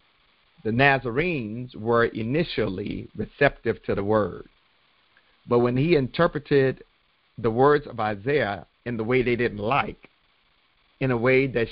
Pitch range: 110-135 Hz